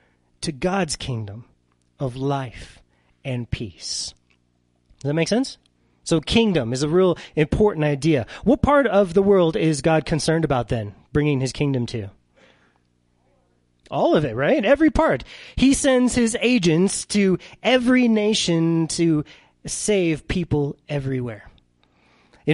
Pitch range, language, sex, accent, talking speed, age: 115-155 Hz, English, male, American, 135 wpm, 30-49